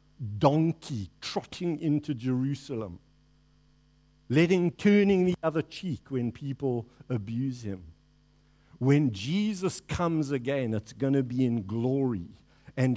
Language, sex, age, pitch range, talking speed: English, male, 60-79, 115-160 Hz, 110 wpm